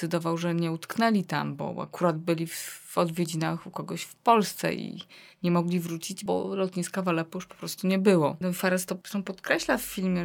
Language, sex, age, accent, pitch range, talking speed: Polish, female, 20-39, native, 165-190 Hz, 180 wpm